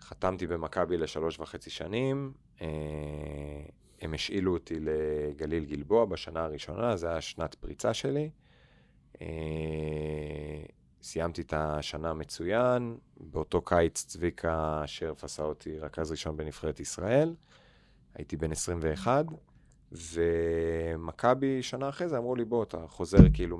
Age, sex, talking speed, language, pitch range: 30-49, male, 110 wpm, Hebrew, 80-100 Hz